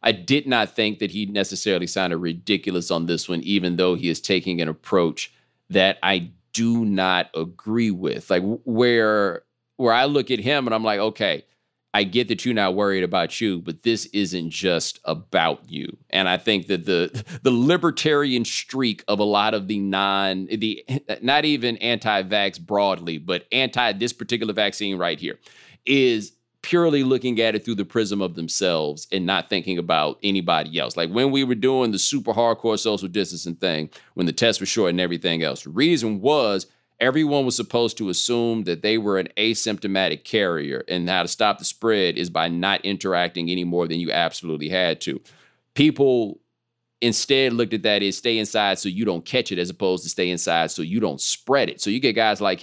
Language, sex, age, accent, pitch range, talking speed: English, male, 30-49, American, 90-120 Hz, 195 wpm